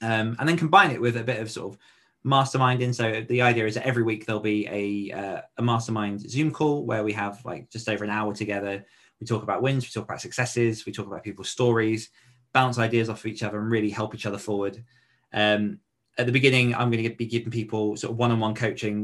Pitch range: 105-125 Hz